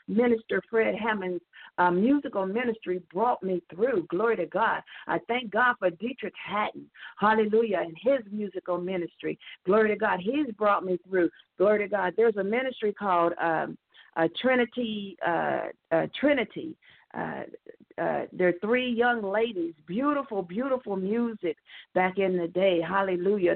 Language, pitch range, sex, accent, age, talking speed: English, 180-245 Hz, female, American, 50-69, 150 wpm